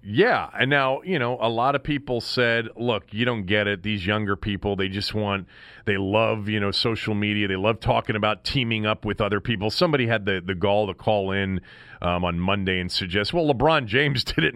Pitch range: 115-160 Hz